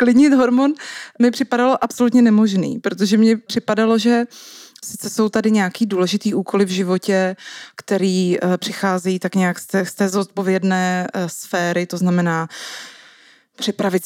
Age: 20-39